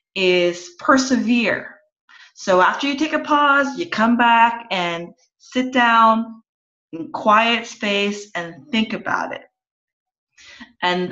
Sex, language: female, English